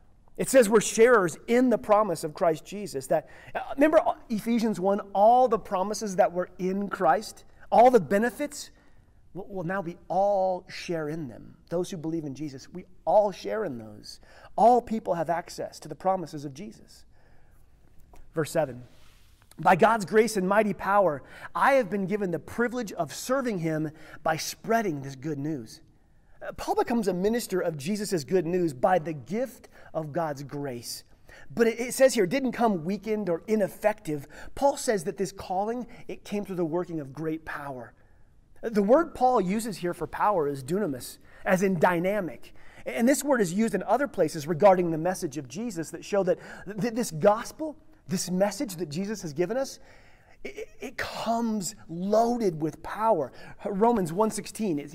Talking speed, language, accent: 170 wpm, English, American